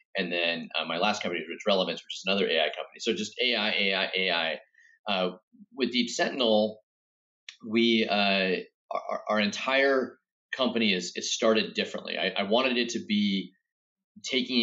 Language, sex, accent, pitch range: English, male, American, 90-130 Hz